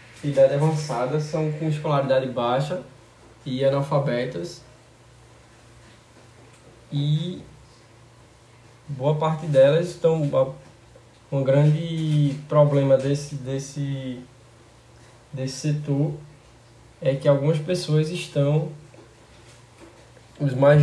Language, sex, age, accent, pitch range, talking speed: Portuguese, male, 10-29, Brazilian, 120-150 Hz, 80 wpm